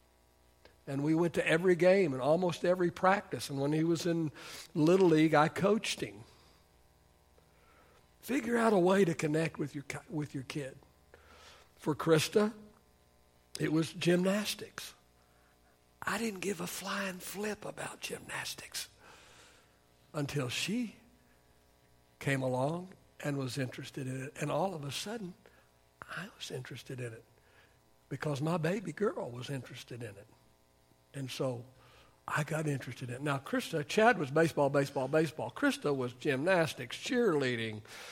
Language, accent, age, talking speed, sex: English, American, 60-79, 140 wpm, male